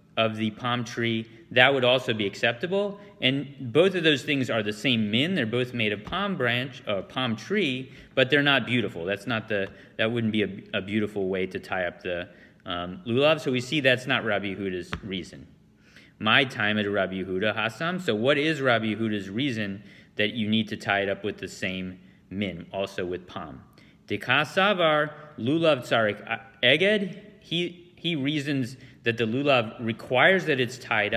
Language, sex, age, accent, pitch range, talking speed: English, male, 30-49, American, 100-135 Hz, 175 wpm